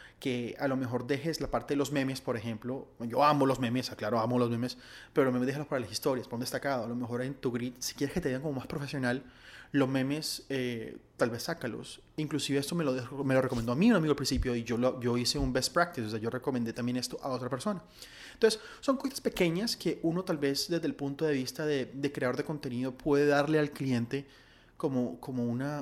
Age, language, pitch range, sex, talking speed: 30-49, Spanish, 125-150 Hz, male, 240 wpm